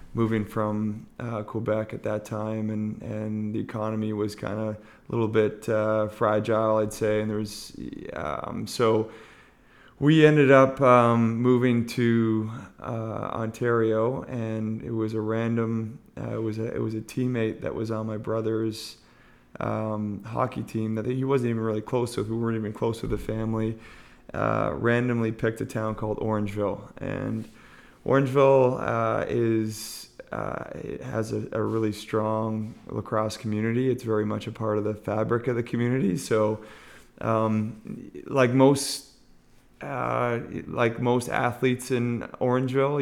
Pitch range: 110-120 Hz